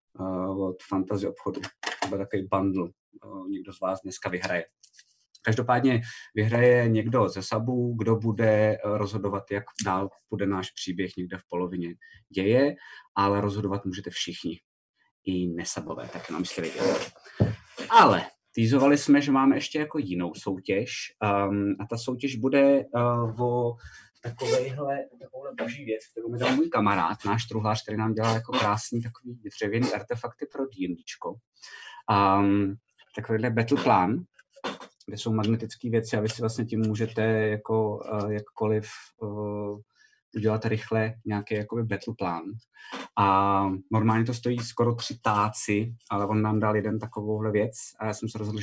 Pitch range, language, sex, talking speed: 100-120 Hz, Czech, male, 145 wpm